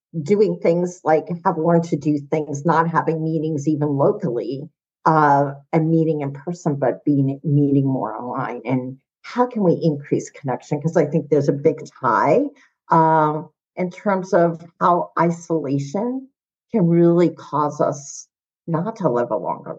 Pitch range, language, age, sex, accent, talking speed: 145-175 Hz, English, 50-69, female, American, 155 wpm